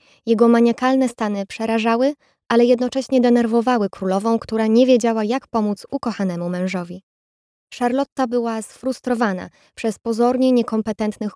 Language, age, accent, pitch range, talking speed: Polish, 20-39, native, 200-240 Hz, 110 wpm